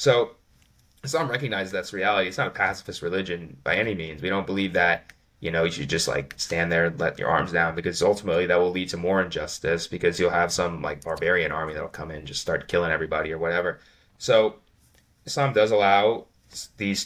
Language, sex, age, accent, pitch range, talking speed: English, male, 20-39, American, 85-100 Hz, 210 wpm